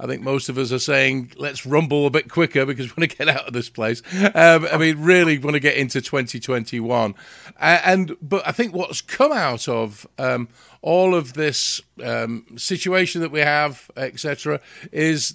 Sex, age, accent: male, 50-69, British